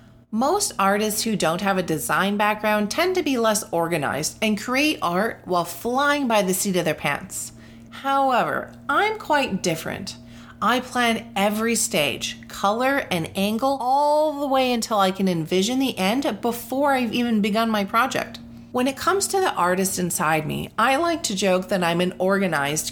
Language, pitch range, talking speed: English, 180-255 Hz, 175 wpm